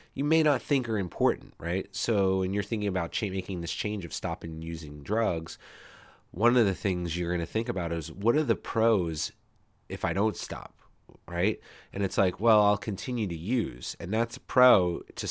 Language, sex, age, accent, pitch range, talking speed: English, male, 30-49, American, 80-105 Hz, 195 wpm